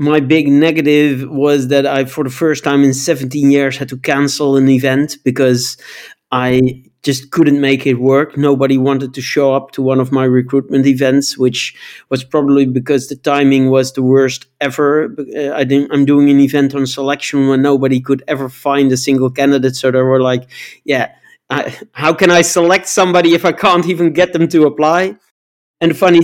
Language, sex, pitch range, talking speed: English, male, 135-160 Hz, 190 wpm